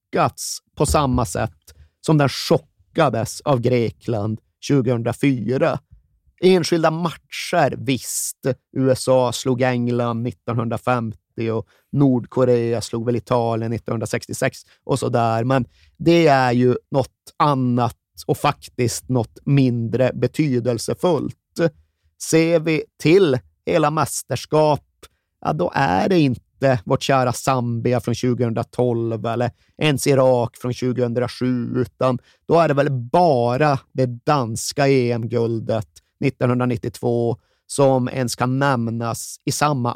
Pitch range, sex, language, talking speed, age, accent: 115-135 Hz, male, Swedish, 105 wpm, 30-49, native